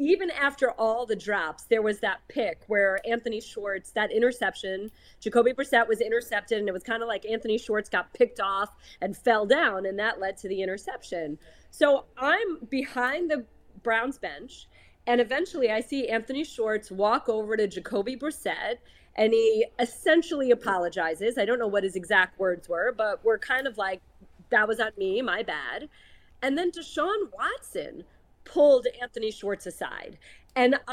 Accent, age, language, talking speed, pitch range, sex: American, 30-49, English, 170 wpm, 205-260 Hz, female